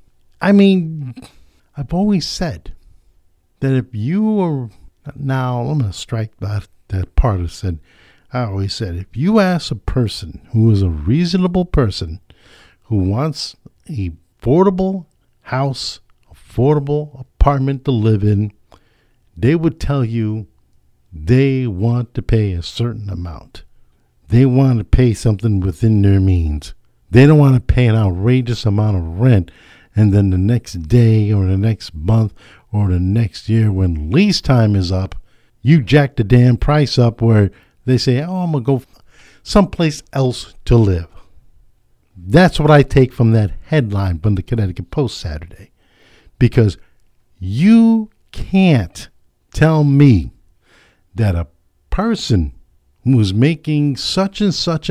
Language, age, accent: English, 60-79, American